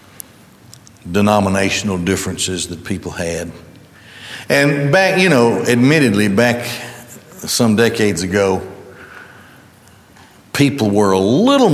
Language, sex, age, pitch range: English, male, 60-79, 100-120 Hz